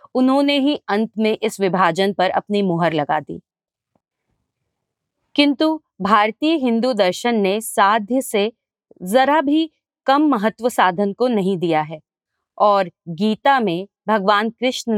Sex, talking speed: female, 130 wpm